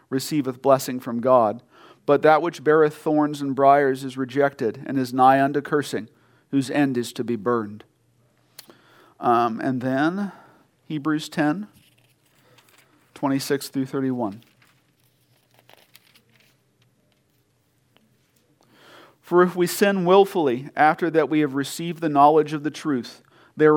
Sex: male